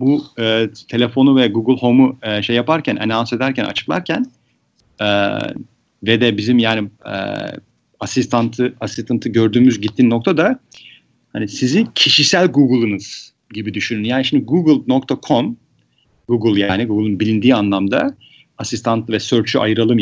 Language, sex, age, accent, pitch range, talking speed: Turkish, male, 40-59, native, 110-145 Hz, 125 wpm